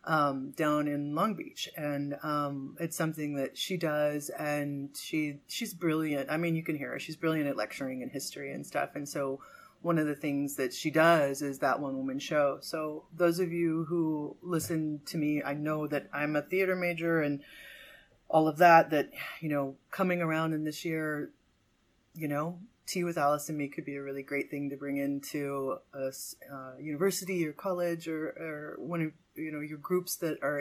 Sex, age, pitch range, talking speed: female, 30-49, 145-165 Hz, 200 wpm